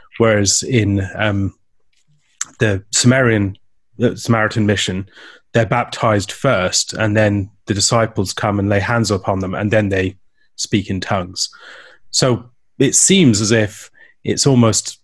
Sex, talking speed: male, 130 wpm